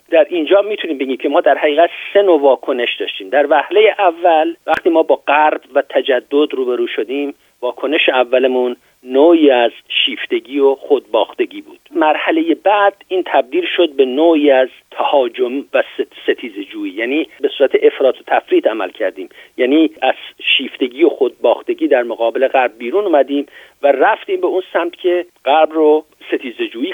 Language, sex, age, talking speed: Persian, male, 50-69, 155 wpm